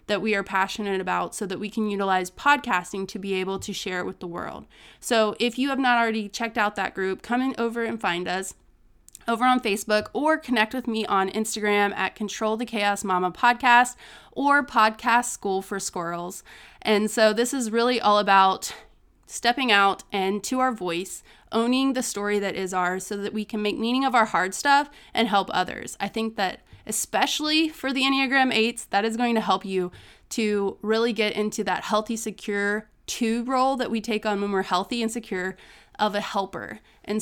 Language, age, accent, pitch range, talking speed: English, 20-39, American, 195-235 Hz, 200 wpm